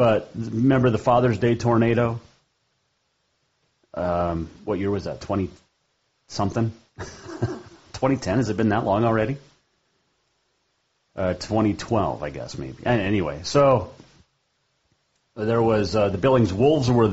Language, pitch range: English, 95-120 Hz